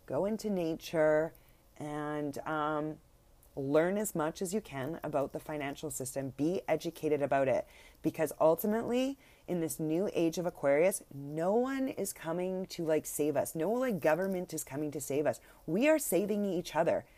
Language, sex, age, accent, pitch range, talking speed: English, female, 30-49, American, 160-205 Hz, 170 wpm